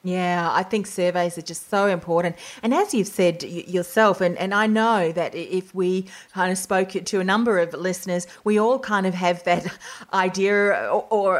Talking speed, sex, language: 195 wpm, female, English